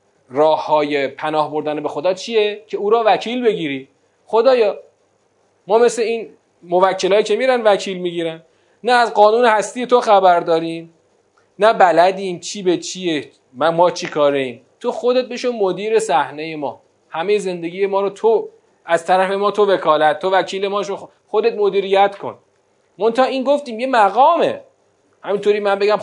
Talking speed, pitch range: 155 wpm, 175-250 Hz